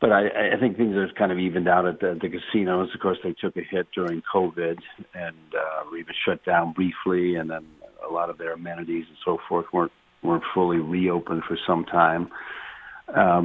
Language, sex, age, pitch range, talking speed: English, male, 50-69, 80-90 Hz, 205 wpm